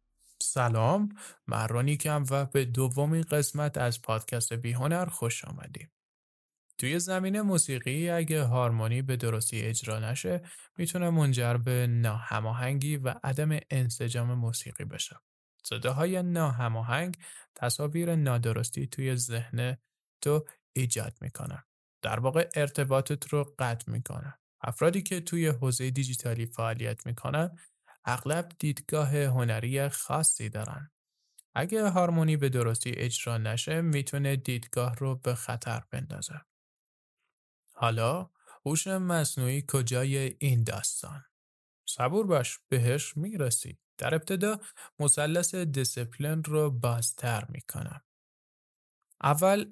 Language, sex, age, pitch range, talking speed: Persian, male, 20-39, 120-155 Hz, 105 wpm